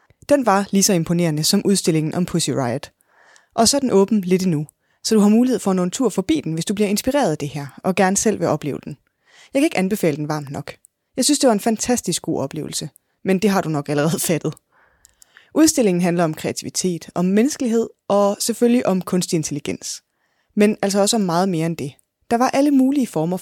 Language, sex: Danish, female